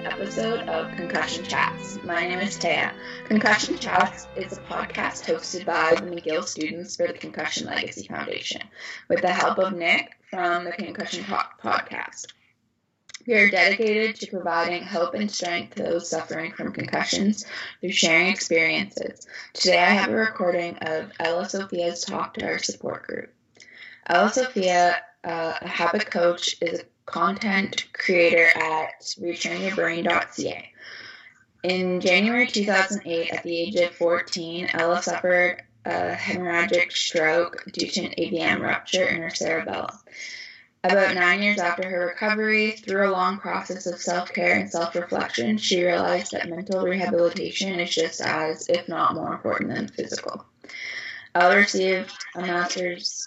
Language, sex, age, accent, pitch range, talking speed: English, female, 20-39, American, 170-195 Hz, 145 wpm